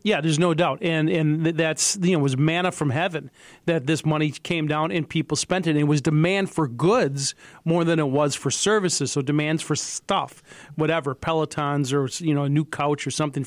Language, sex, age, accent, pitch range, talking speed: English, male, 40-59, American, 145-165 Hz, 215 wpm